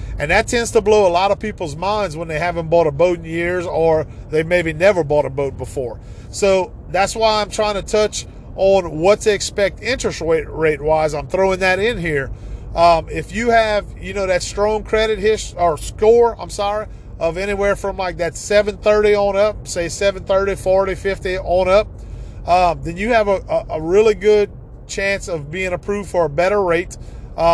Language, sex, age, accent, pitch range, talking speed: English, male, 40-59, American, 160-205 Hz, 195 wpm